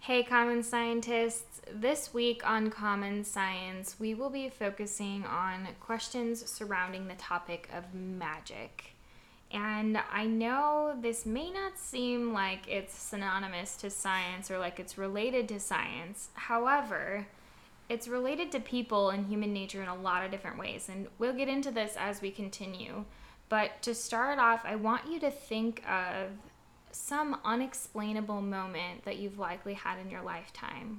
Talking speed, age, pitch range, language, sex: 155 wpm, 10-29, 195-235 Hz, English, female